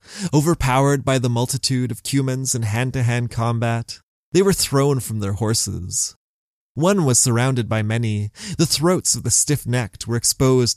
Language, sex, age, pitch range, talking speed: English, male, 20-39, 110-150 Hz, 150 wpm